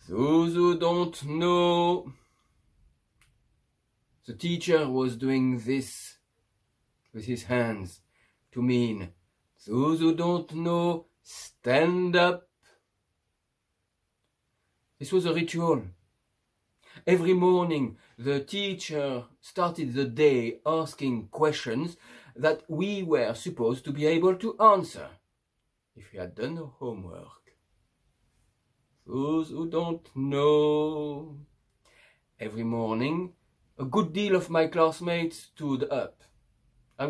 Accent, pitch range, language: French, 120-170 Hz, English